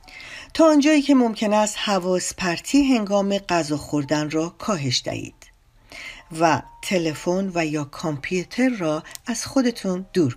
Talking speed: 125 wpm